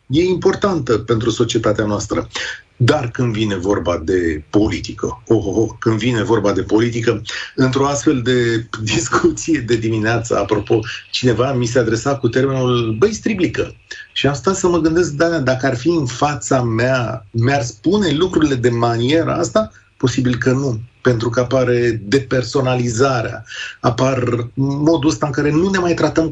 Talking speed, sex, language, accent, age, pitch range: 155 wpm, male, Romanian, native, 40-59, 115-140 Hz